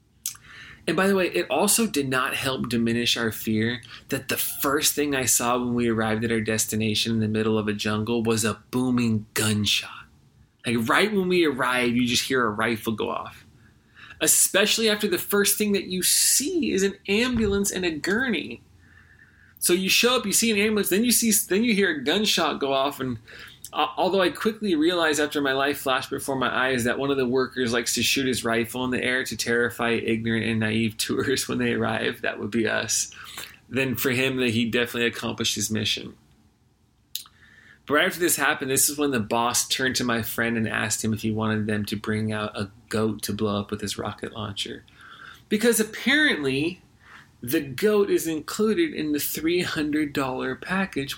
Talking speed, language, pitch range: 195 wpm, English, 115-175 Hz